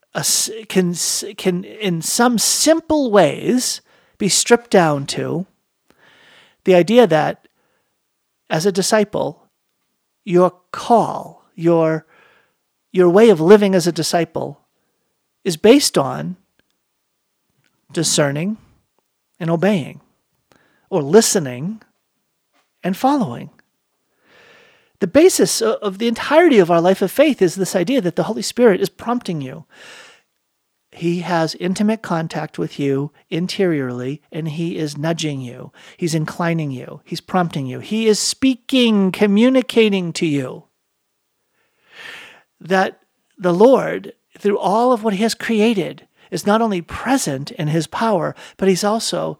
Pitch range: 170-225 Hz